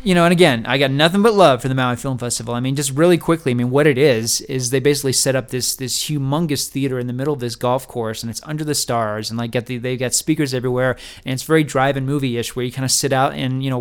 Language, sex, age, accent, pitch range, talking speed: English, male, 30-49, American, 125-145 Hz, 285 wpm